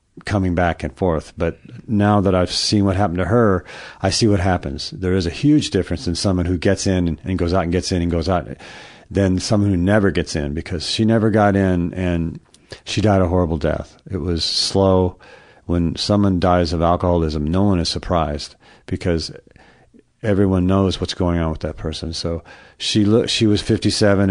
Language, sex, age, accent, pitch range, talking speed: English, male, 40-59, American, 85-100 Hz, 195 wpm